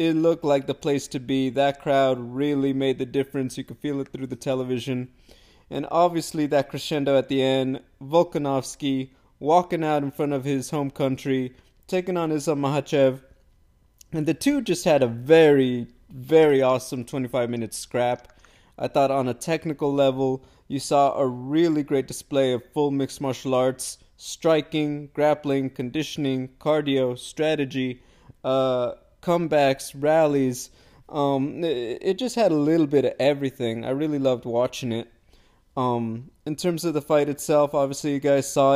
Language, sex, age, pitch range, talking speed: English, male, 20-39, 130-160 Hz, 155 wpm